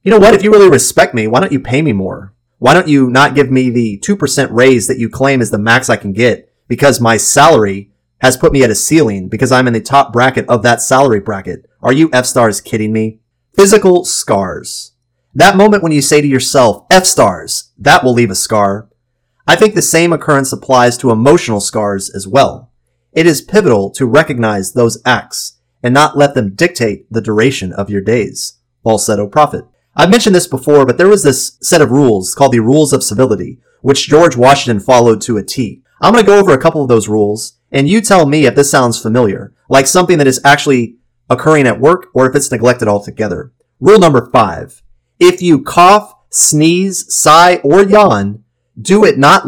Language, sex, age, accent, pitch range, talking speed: English, male, 30-49, American, 115-150 Hz, 205 wpm